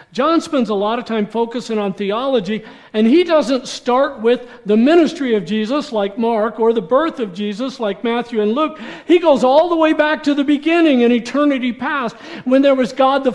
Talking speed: 205 wpm